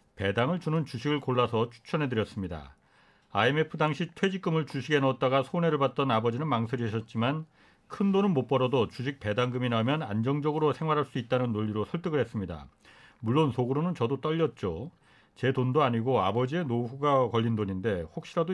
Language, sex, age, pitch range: Korean, male, 40-59, 120-160 Hz